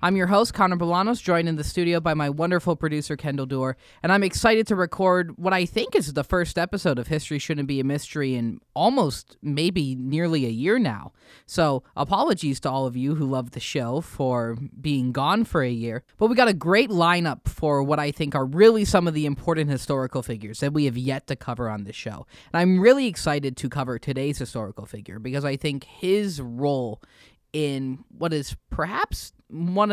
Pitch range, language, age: 130-170 Hz, English, 20-39